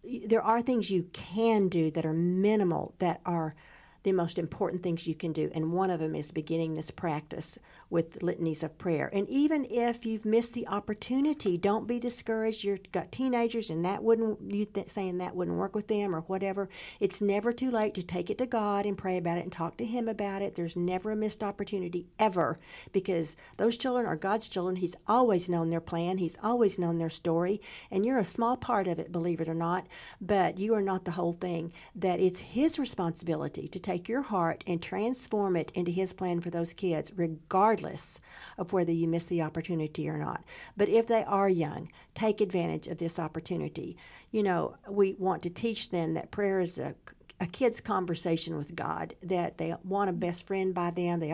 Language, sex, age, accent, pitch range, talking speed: English, female, 50-69, American, 170-210 Hz, 205 wpm